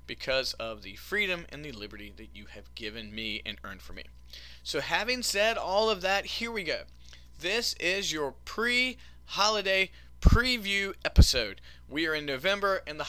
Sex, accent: male, American